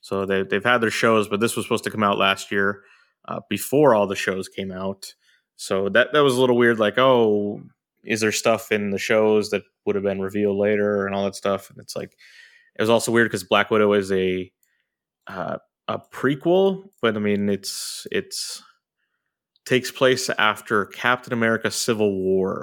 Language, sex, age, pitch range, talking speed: English, male, 20-39, 100-115 Hz, 195 wpm